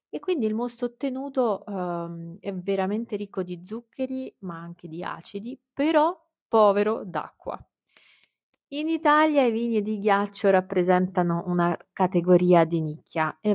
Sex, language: female, Italian